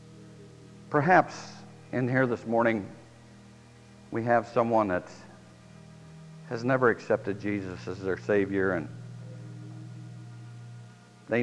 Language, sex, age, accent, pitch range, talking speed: English, male, 60-79, American, 80-135 Hz, 95 wpm